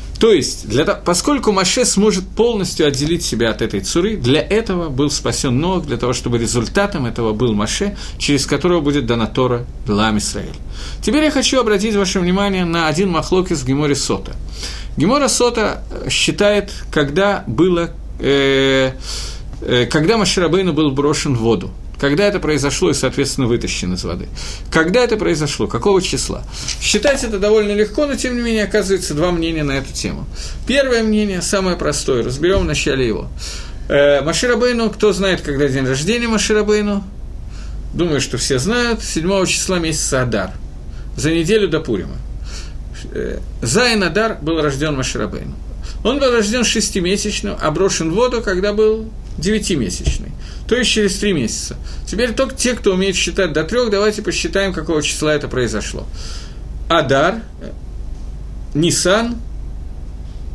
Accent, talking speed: native, 145 wpm